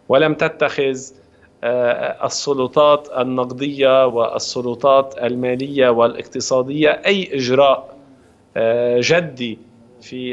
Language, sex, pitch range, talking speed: Arabic, male, 130-150 Hz, 65 wpm